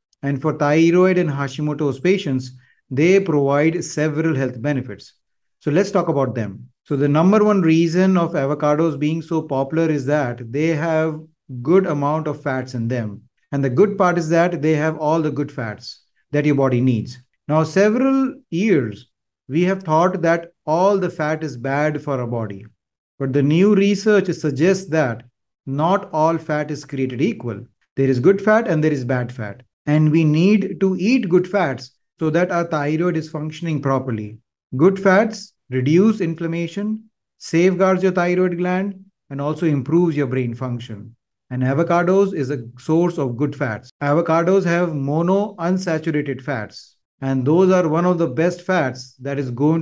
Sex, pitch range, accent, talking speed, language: male, 135-175 Hz, Indian, 165 wpm, English